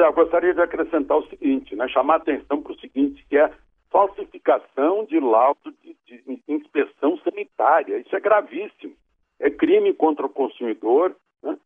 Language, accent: Portuguese, Brazilian